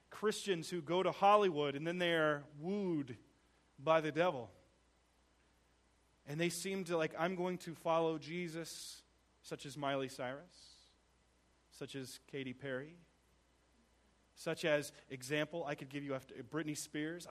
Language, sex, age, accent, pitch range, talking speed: English, male, 30-49, American, 140-210 Hz, 140 wpm